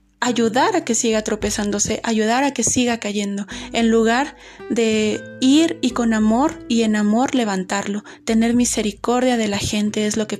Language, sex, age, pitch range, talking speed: Spanish, female, 20-39, 210-240 Hz, 165 wpm